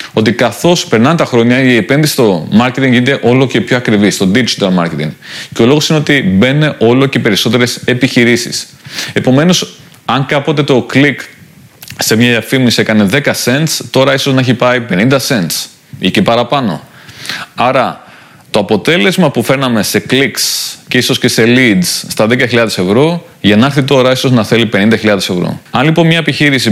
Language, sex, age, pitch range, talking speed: Greek, male, 30-49, 120-160 Hz, 170 wpm